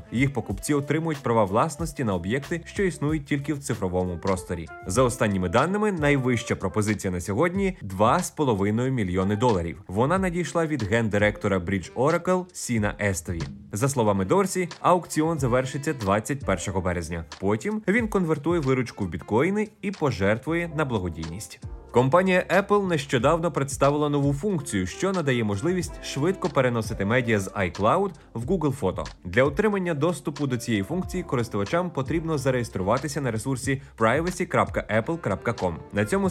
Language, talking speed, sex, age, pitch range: Ukrainian, 130 wpm, male, 20-39, 105-165 Hz